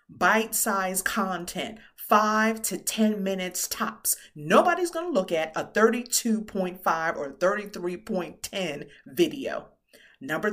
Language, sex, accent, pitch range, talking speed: English, female, American, 175-225 Hz, 105 wpm